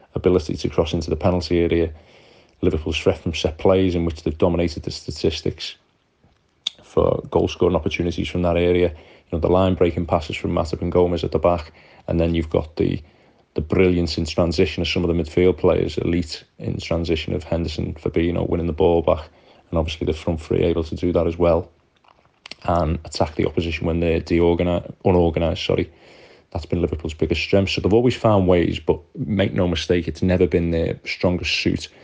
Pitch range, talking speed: 85-90 Hz, 195 wpm